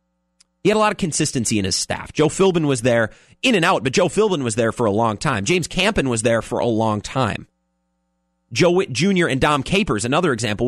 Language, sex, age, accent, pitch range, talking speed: English, male, 30-49, American, 120-180 Hz, 230 wpm